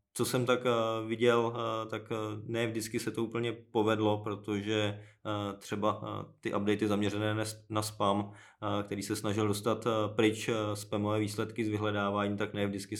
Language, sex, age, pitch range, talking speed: Czech, male, 20-39, 95-105 Hz, 140 wpm